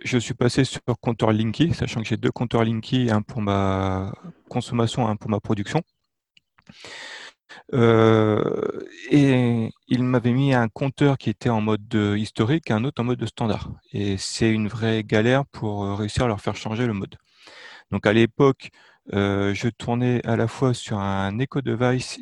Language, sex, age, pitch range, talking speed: French, male, 30-49, 110-130 Hz, 175 wpm